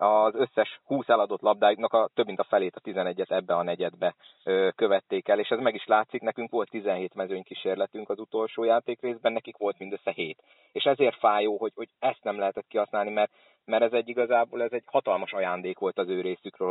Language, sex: Hungarian, male